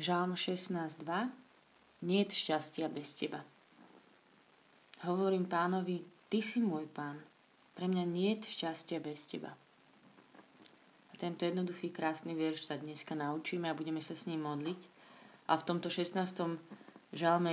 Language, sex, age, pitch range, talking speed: Slovak, female, 20-39, 155-175 Hz, 130 wpm